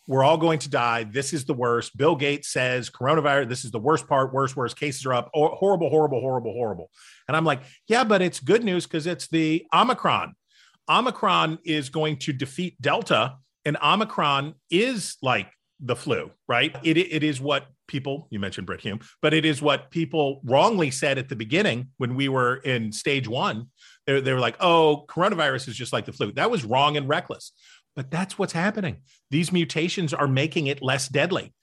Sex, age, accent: male, 40-59, American